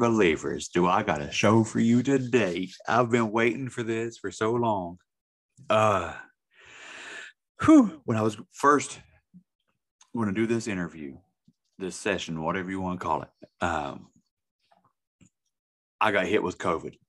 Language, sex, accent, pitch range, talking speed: English, male, American, 85-110 Hz, 150 wpm